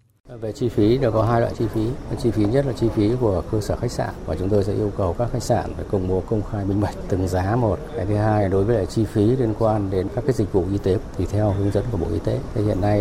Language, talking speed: Vietnamese, 305 wpm